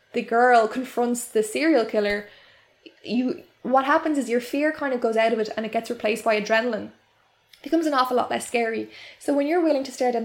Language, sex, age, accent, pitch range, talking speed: English, female, 10-29, Irish, 220-250 Hz, 220 wpm